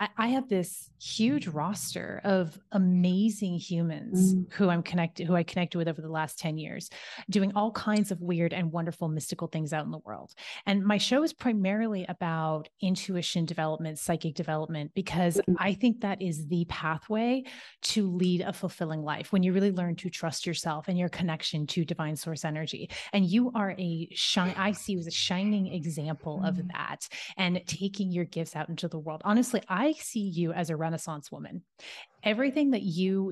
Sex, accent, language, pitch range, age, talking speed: female, American, English, 165-200 Hz, 30-49, 180 wpm